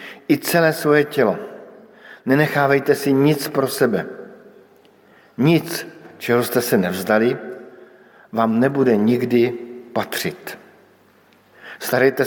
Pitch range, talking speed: 115-140 Hz, 95 wpm